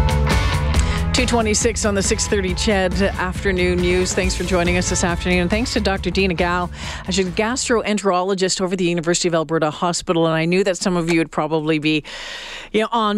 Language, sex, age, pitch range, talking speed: English, female, 40-59, 145-180 Hz, 200 wpm